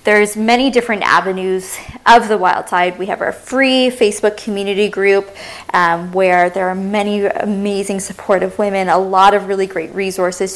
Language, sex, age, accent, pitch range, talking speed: English, female, 20-39, American, 185-220 Hz, 165 wpm